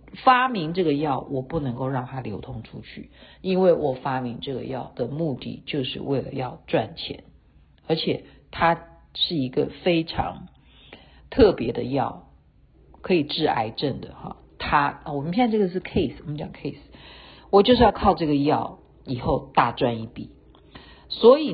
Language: Chinese